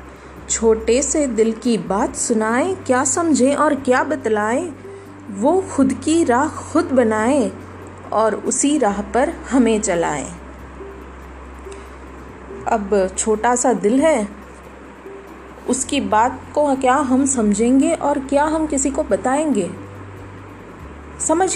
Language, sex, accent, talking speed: Hindi, female, native, 115 wpm